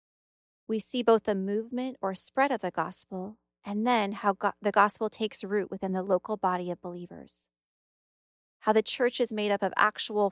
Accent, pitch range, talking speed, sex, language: American, 180-215 Hz, 180 wpm, female, English